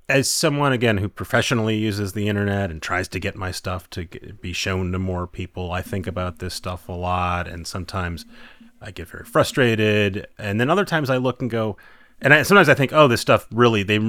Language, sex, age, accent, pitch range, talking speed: English, male, 30-49, American, 90-110 Hz, 215 wpm